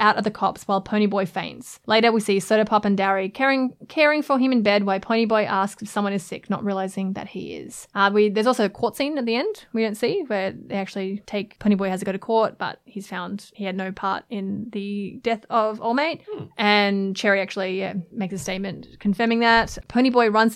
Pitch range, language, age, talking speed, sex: 195-235 Hz, English, 20-39, 240 wpm, female